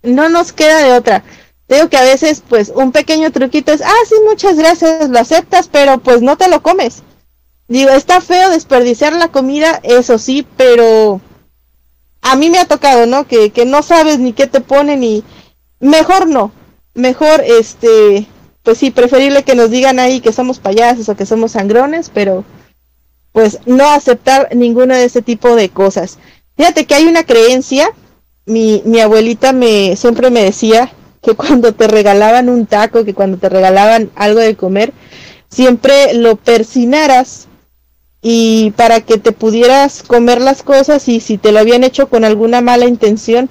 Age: 30-49